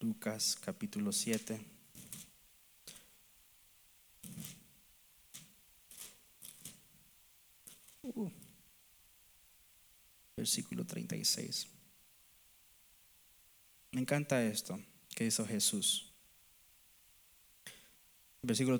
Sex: male